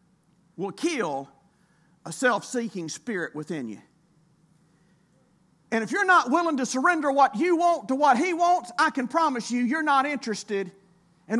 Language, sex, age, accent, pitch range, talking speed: English, male, 50-69, American, 215-335 Hz, 155 wpm